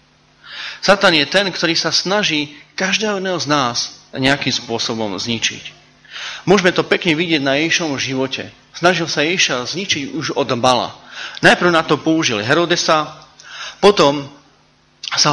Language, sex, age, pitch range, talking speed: Slovak, male, 30-49, 120-165 Hz, 130 wpm